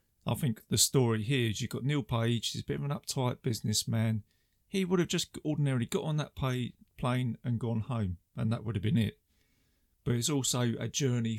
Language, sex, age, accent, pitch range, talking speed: English, male, 30-49, British, 110-140 Hz, 215 wpm